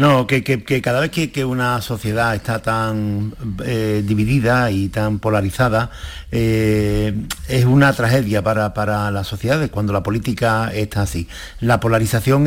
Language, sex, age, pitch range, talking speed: Spanish, male, 50-69, 110-135 Hz, 155 wpm